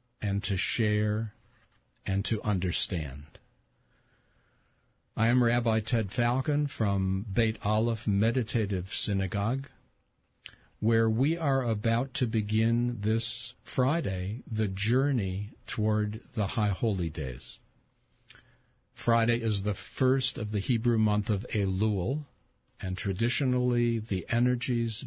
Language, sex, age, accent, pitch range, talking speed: English, male, 50-69, American, 100-125 Hz, 110 wpm